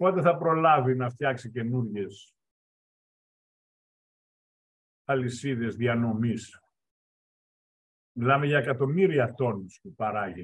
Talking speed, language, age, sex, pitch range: 80 wpm, Greek, 50-69, male, 105-135 Hz